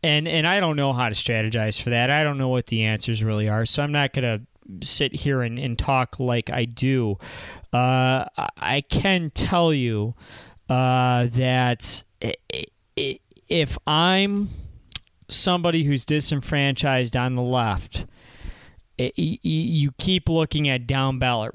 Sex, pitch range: male, 120-150 Hz